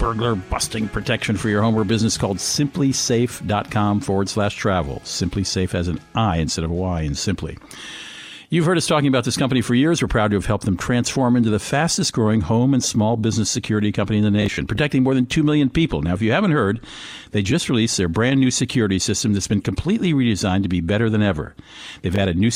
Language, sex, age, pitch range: English, male, 50-69, 100-125 Hz